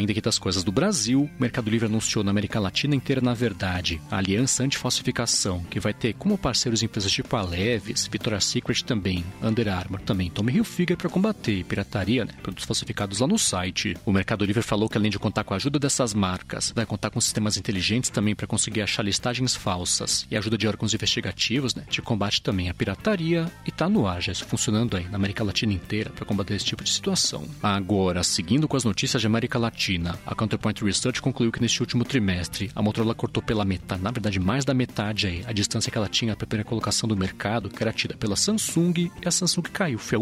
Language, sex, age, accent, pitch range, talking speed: Portuguese, male, 40-59, Brazilian, 100-125 Hz, 220 wpm